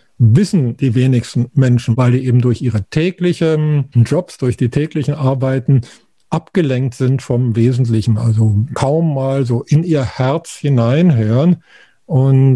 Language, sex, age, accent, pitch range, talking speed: German, male, 50-69, German, 115-140 Hz, 135 wpm